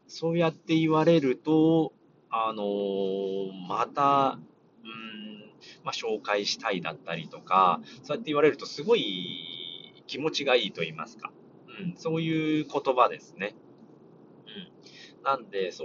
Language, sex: Japanese, male